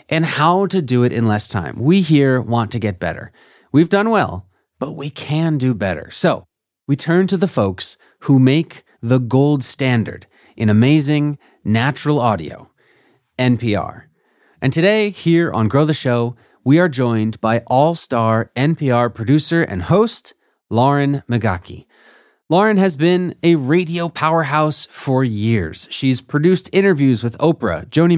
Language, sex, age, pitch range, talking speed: English, male, 30-49, 120-170 Hz, 150 wpm